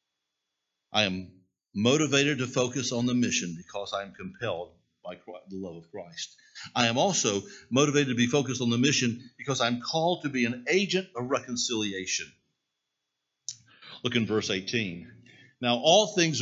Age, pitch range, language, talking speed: 50-69, 115-150 Hz, English, 155 wpm